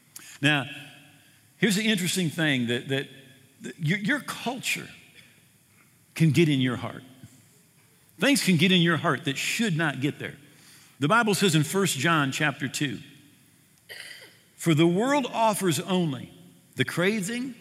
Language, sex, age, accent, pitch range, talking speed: English, male, 50-69, American, 140-175 Hz, 145 wpm